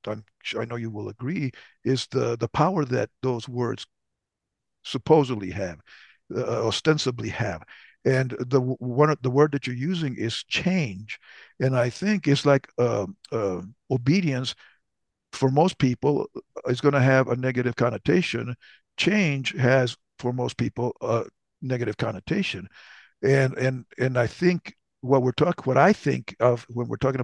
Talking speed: 155 wpm